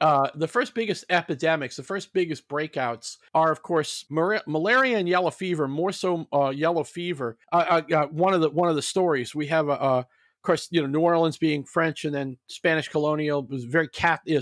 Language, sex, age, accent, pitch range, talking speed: English, male, 40-59, American, 145-175 Hz, 215 wpm